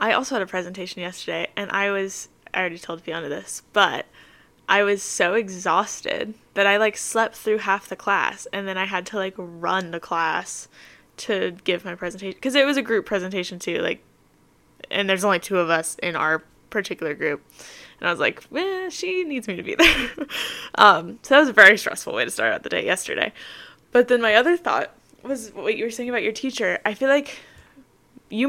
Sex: female